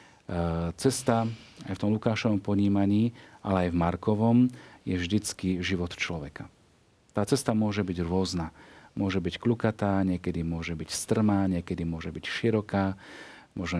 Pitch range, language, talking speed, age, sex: 90-110 Hz, Slovak, 135 wpm, 40-59, male